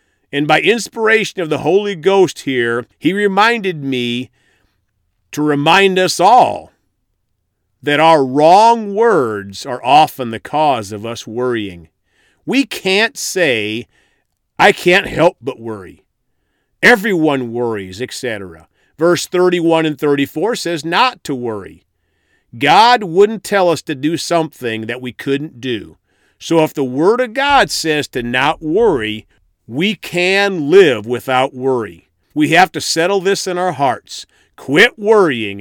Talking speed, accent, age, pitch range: 135 wpm, American, 50-69, 120-185 Hz